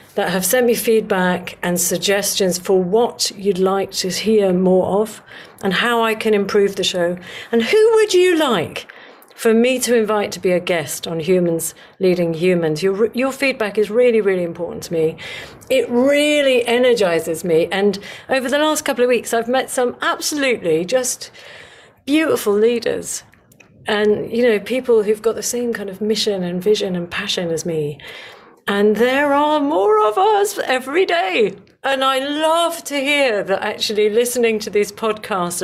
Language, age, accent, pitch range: English, 50-69, British, 185-250 Hz